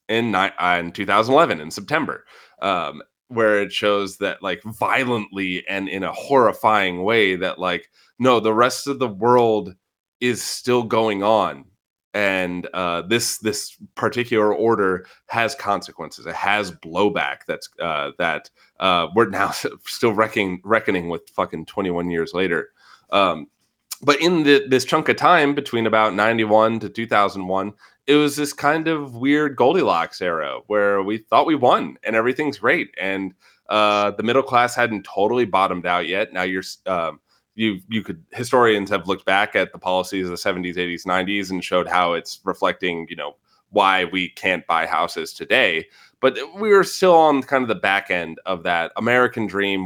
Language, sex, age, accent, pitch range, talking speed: English, male, 30-49, American, 95-120 Hz, 165 wpm